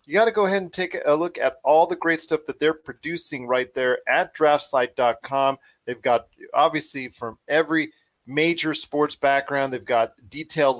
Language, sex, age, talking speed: English, male, 40-59, 180 wpm